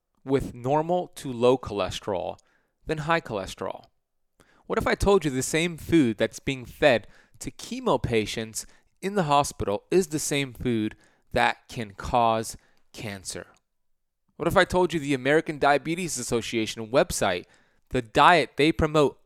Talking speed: 145 wpm